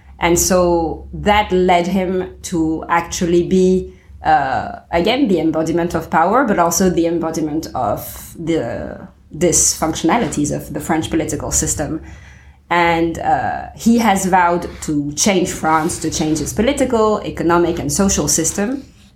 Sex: female